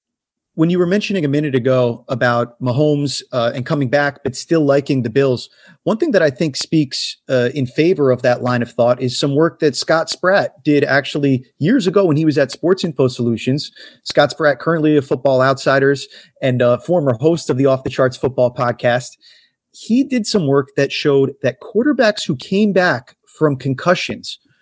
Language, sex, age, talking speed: English, male, 30-49, 195 wpm